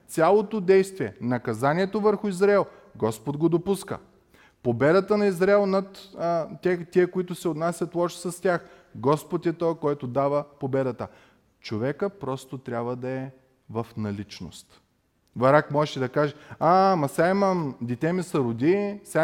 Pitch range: 130-190 Hz